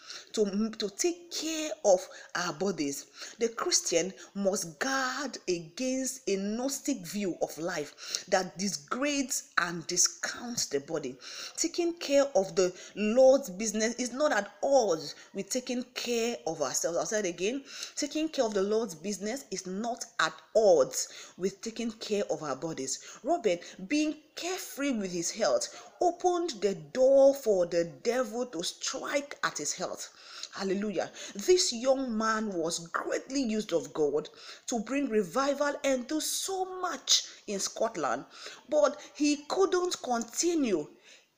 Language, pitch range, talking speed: English, 195-290 Hz, 140 wpm